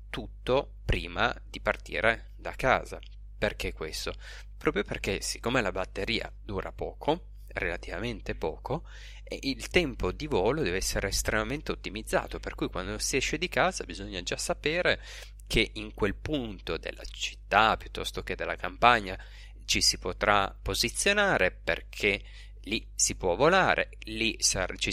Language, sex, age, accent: Italian, male, 30-49, native